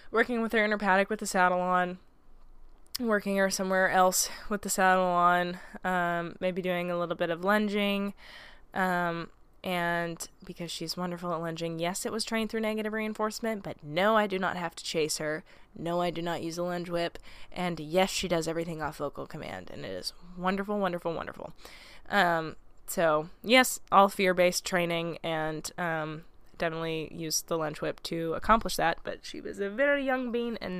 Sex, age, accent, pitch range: female, 10-29, American, 170-210 Hz